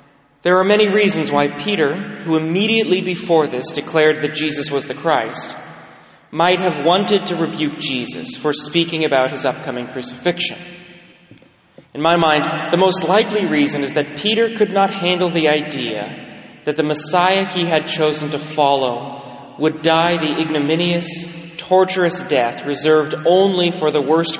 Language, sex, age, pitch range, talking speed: English, male, 30-49, 140-180 Hz, 150 wpm